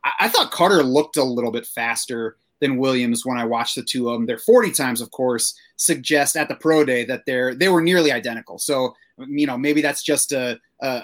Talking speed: 225 wpm